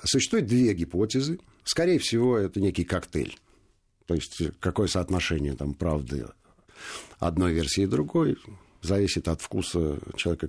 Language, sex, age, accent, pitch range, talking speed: Russian, male, 50-69, native, 80-105 Hz, 125 wpm